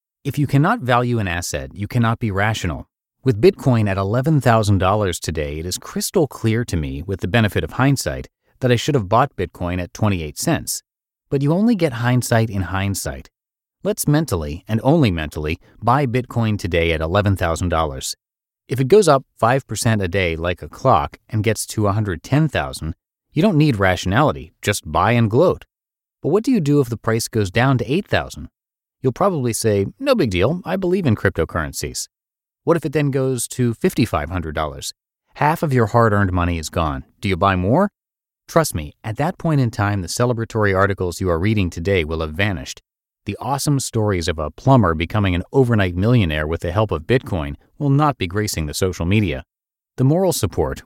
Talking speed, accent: 185 wpm, American